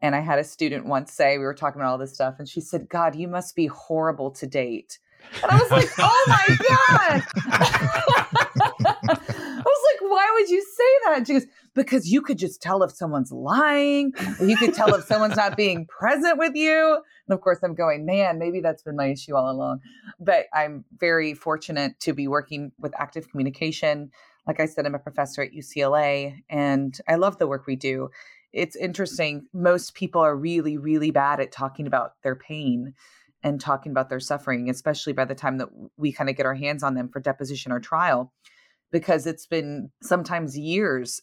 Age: 30-49